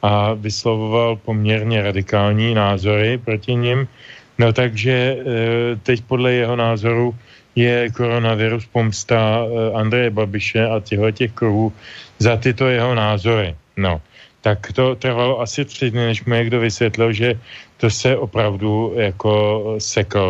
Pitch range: 105-120 Hz